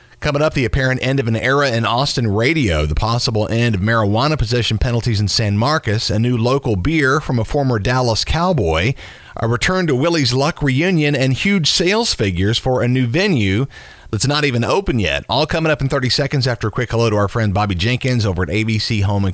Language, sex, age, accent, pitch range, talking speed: English, male, 40-59, American, 100-135 Hz, 215 wpm